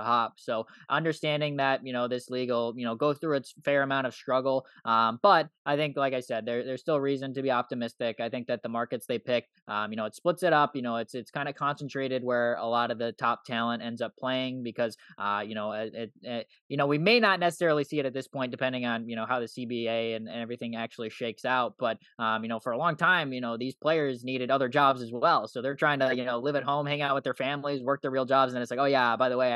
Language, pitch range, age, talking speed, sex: English, 115-140 Hz, 10-29, 275 wpm, male